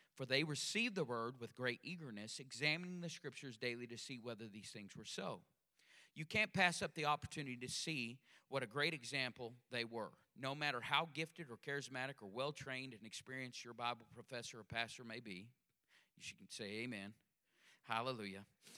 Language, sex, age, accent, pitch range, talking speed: English, male, 40-59, American, 120-150 Hz, 175 wpm